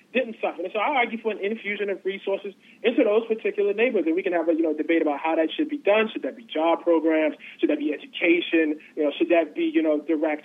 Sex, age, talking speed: male, 30-49, 265 wpm